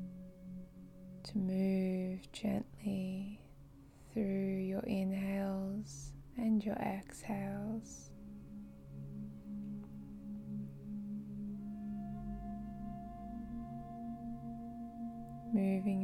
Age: 20-39